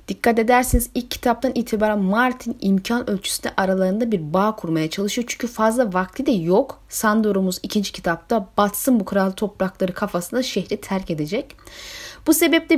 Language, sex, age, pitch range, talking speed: Turkish, female, 30-49, 185-255 Hz, 145 wpm